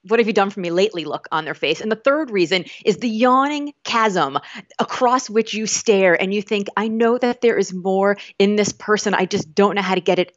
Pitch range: 185-240 Hz